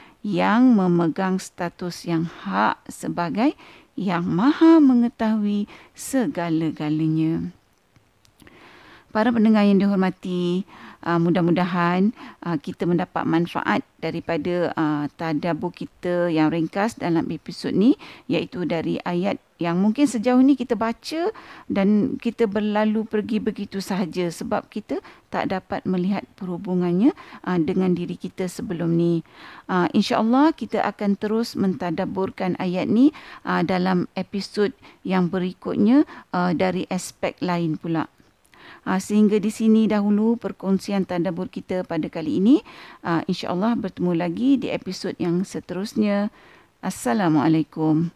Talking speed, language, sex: 120 wpm, Malay, female